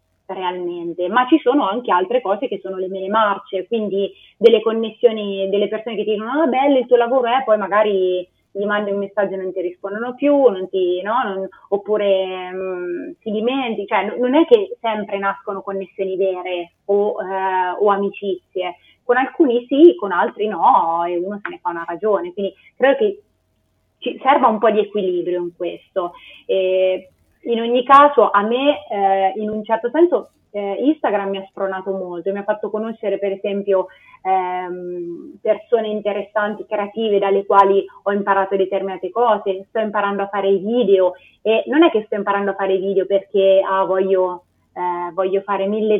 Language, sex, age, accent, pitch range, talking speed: Italian, female, 30-49, native, 190-220 Hz, 175 wpm